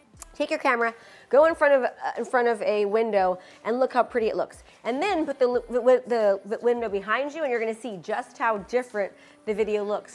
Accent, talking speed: American, 230 wpm